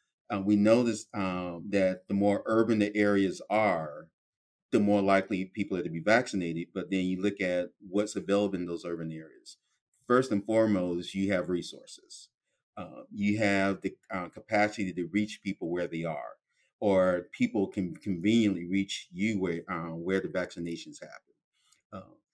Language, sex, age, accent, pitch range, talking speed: English, male, 30-49, American, 95-105 Hz, 165 wpm